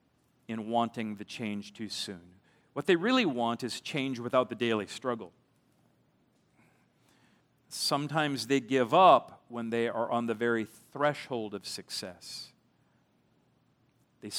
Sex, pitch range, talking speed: male, 120-165 Hz, 125 wpm